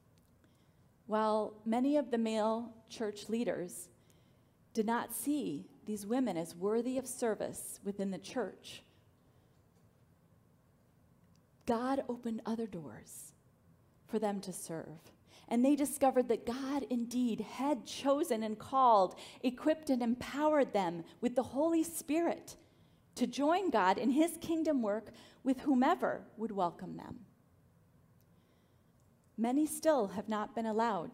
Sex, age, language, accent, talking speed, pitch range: female, 40-59, English, American, 120 wpm, 200-265 Hz